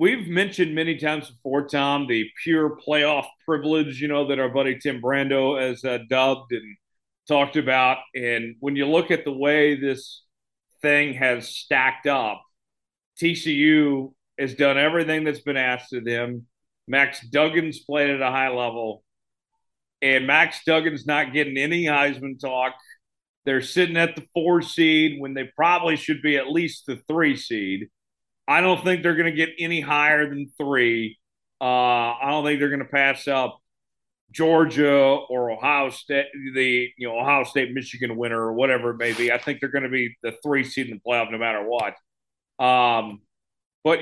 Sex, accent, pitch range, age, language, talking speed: male, American, 130-165 Hz, 40-59, English, 175 wpm